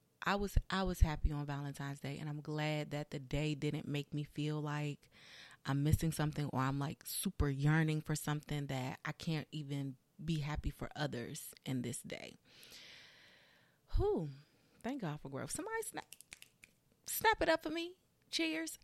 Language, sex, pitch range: English, female, 145-180 Hz